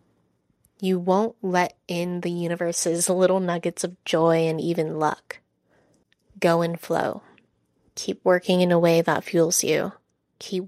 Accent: American